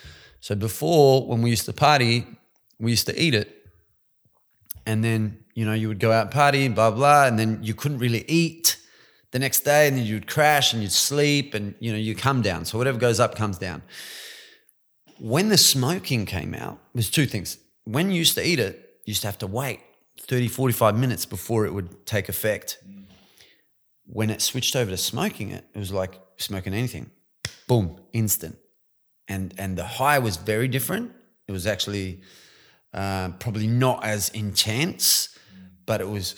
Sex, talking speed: male, 185 wpm